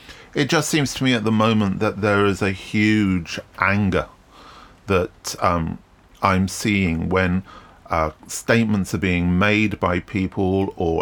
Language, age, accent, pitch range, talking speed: English, 40-59, British, 85-115 Hz, 145 wpm